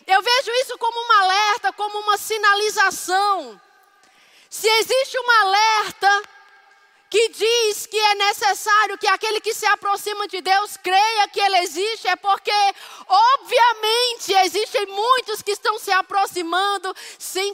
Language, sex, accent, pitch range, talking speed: Portuguese, female, Brazilian, 340-410 Hz, 135 wpm